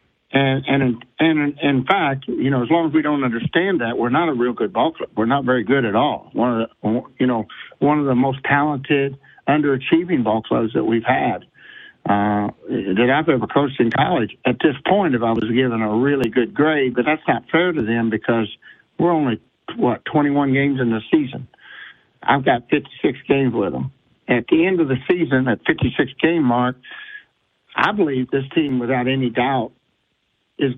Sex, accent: male, American